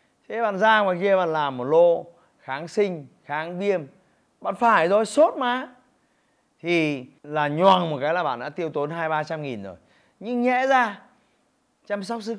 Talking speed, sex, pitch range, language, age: 180 wpm, male, 135-205 Hz, Vietnamese, 20-39